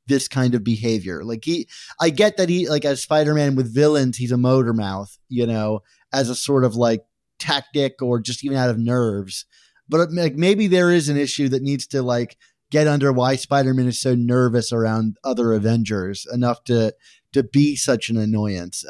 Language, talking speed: English, 195 wpm